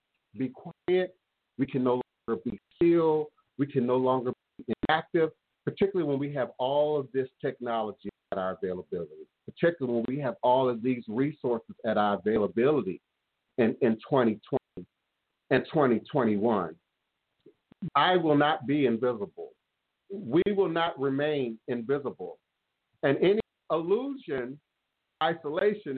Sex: male